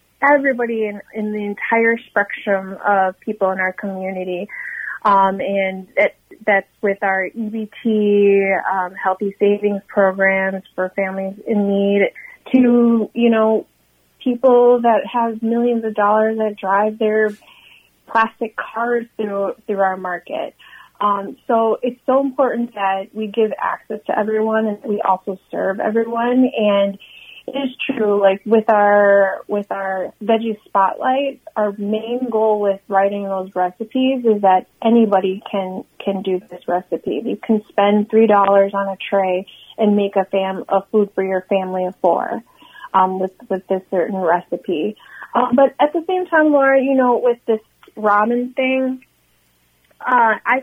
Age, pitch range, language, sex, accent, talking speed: 20-39, 195-230 Hz, English, female, American, 150 wpm